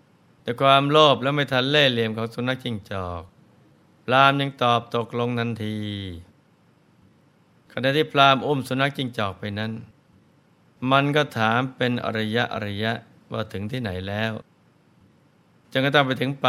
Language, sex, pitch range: Thai, male, 110-135 Hz